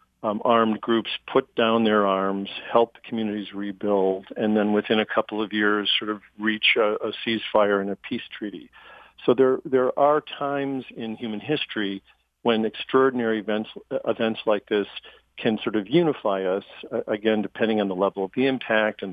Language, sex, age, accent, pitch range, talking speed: English, male, 50-69, American, 105-115 Hz, 175 wpm